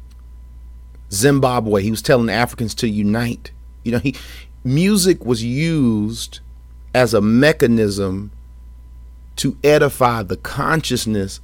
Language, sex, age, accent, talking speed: English, male, 40-59, American, 105 wpm